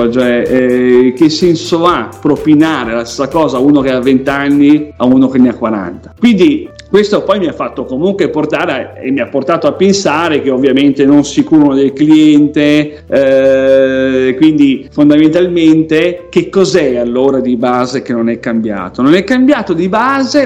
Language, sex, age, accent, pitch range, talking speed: Italian, male, 40-59, native, 135-215 Hz, 170 wpm